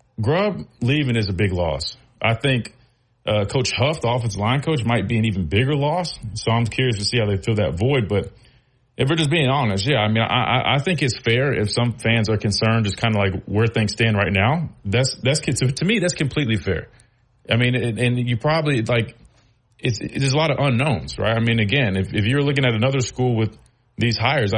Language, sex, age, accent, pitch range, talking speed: English, male, 30-49, American, 110-135 Hz, 225 wpm